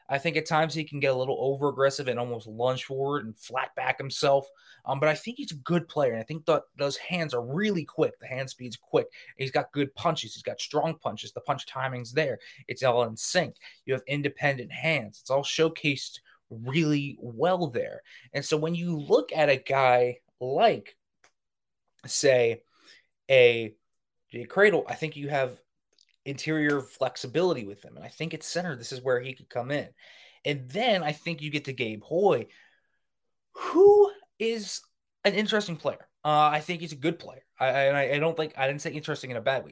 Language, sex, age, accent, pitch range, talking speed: English, male, 20-39, American, 130-165 Hz, 200 wpm